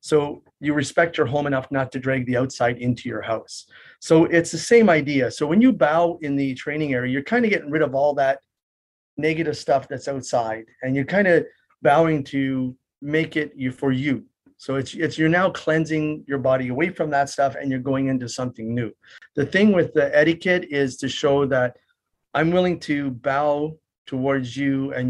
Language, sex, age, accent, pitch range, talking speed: English, male, 40-59, American, 125-155 Hz, 200 wpm